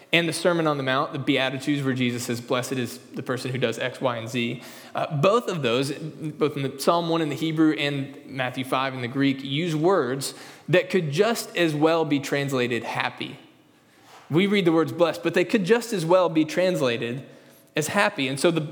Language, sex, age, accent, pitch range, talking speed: English, male, 20-39, American, 125-165 Hz, 215 wpm